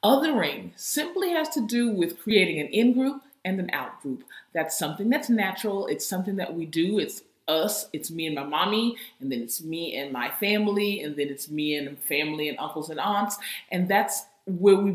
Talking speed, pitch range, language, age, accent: 195 wpm, 165-220 Hz, English, 40-59, American